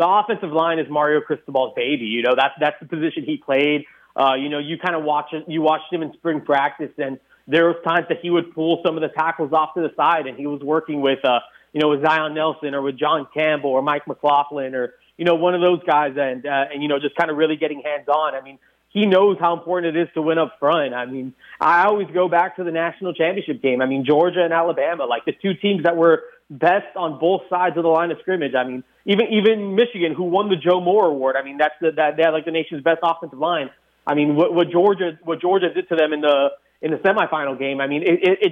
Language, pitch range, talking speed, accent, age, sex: English, 145-170 Hz, 260 wpm, American, 30-49, male